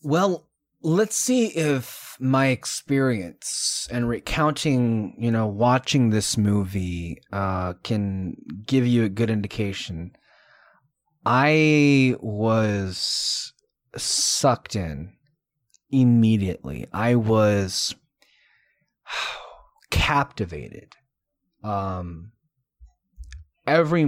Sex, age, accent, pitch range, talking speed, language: male, 20-39, American, 105-135 Hz, 75 wpm, English